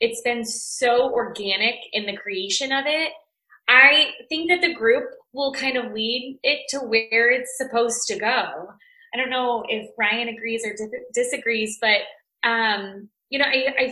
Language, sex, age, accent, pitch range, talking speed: English, female, 20-39, American, 215-275 Hz, 170 wpm